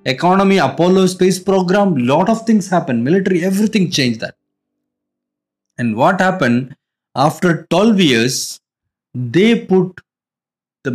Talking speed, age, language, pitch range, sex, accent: 115 wpm, 20-39, English, 135-195 Hz, male, Indian